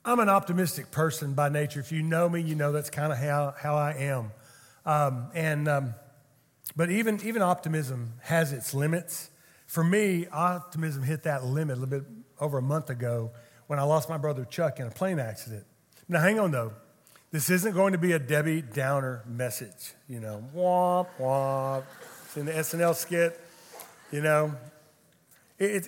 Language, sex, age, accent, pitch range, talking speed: English, male, 40-59, American, 140-180 Hz, 175 wpm